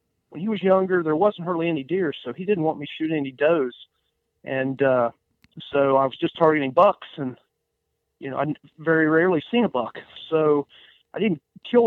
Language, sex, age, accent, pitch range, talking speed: English, male, 40-59, American, 140-175 Hz, 195 wpm